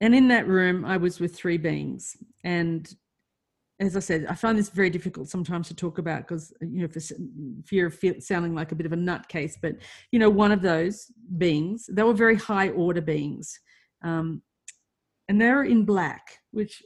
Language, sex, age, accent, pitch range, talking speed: English, female, 40-59, Australian, 165-210 Hz, 200 wpm